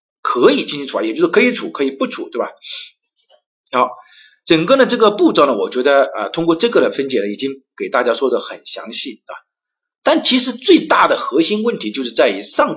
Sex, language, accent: male, Chinese, native